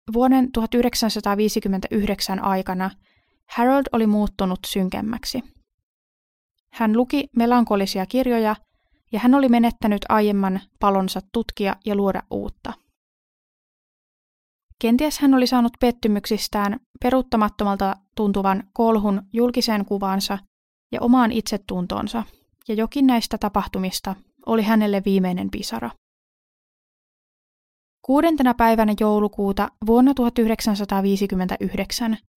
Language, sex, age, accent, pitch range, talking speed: Finnish, female, 20-39, native, 195-240 Hz, 85 wpm